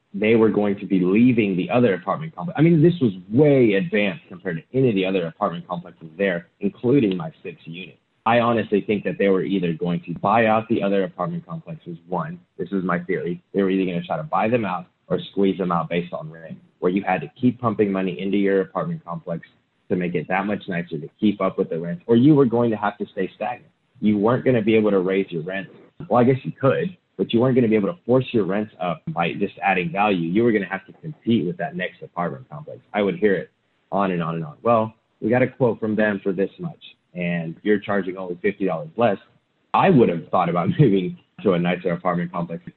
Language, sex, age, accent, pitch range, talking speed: English, male, 30-49, American, 90-115 Hz, 250 wpm